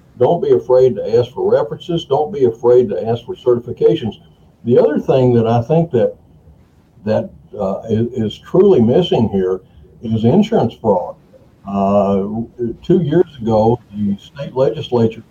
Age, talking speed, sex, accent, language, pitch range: 60-79, 150 wpm, male, American, English, 105-130 Hz